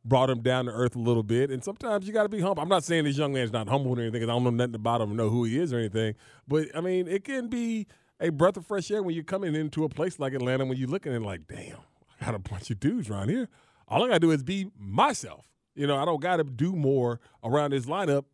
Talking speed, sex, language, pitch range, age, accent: 300 wpm, male, English, 115-150 Hz, 30-49, American